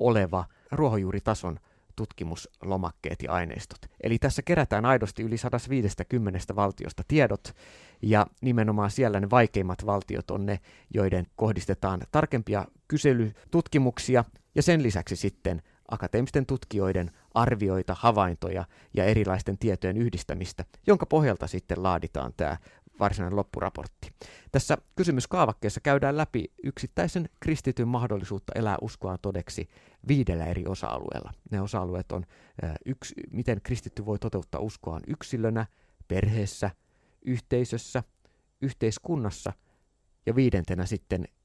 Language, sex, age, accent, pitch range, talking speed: Finnish, male, 30-49, native, 95-125 Hz, 105 wpm